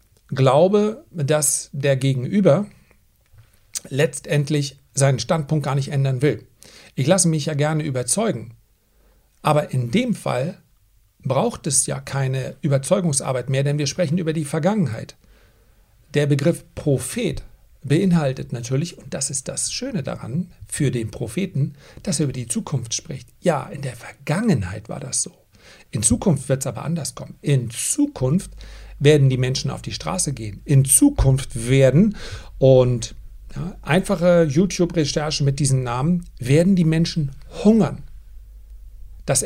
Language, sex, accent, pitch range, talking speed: German, male, German, 130-170 Hz, 140 wpm